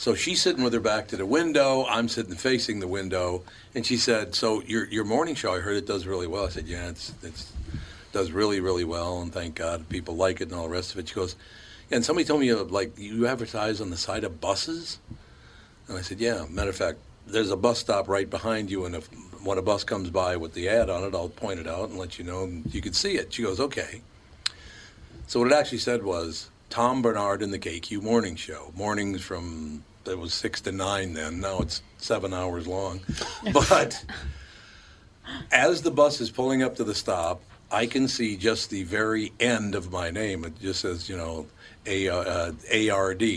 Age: 60-79